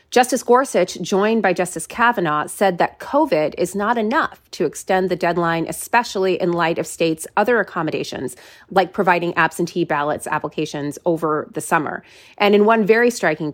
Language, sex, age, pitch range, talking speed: English, female, 30-49, 160-200 Hz, 160 wpm